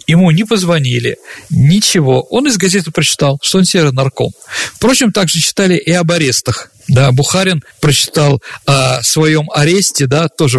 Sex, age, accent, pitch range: male, 40-59, native, 140-195 Hz